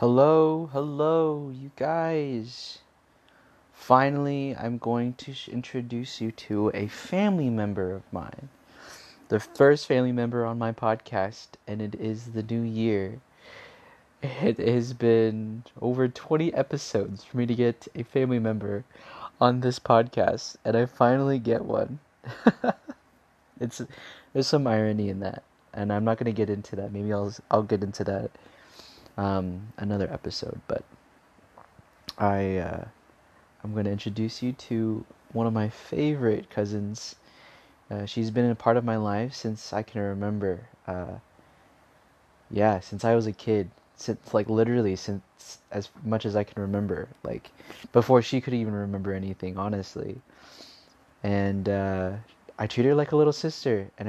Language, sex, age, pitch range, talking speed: English, male, 20-39, 105-130 Hz, 150 wpm